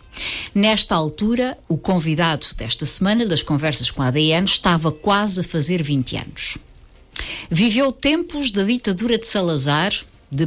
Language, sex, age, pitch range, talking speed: Portuguese, female, 50-69, 150-220 Hz, 140 wpm